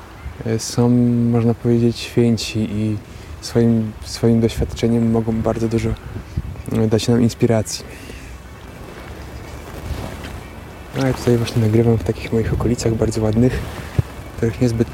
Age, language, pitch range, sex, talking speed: 20-39, Polish, 100-120 Hz, male, 115 wpm